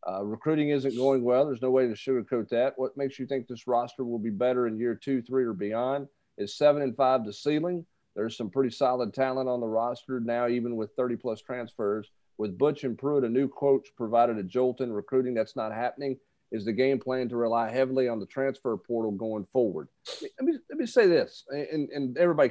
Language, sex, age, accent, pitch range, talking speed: English, male, 40-59, American, 120-150 Hz, 225 wpm